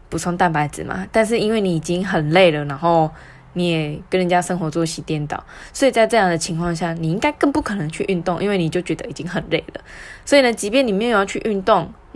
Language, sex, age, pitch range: Chinese, female, 20-39, 165-195 Hz